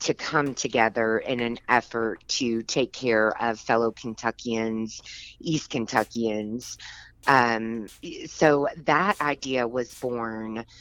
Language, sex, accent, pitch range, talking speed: English, female, American, 110-130 Hz, 110 wpm